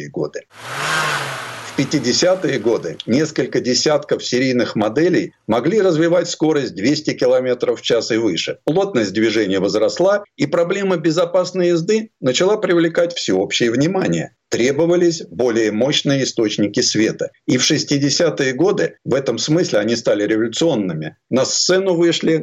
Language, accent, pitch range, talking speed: Russian, native, 130-210 Hz, 125 wpm